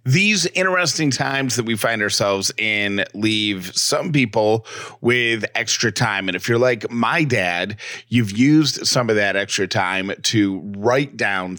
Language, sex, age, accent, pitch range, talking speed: English, male, 30-49, American, 105-125 Hz, 155 wpm